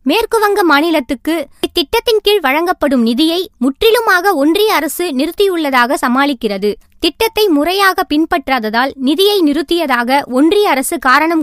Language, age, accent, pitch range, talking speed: Tamil, 20-39, native, 280-380 Hz, 95 wpm